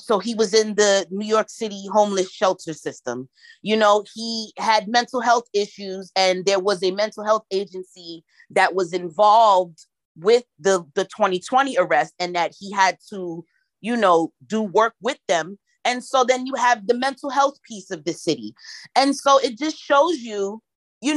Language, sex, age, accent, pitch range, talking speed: English, female, 30-49, American, 190-250 Hz, 180 wpm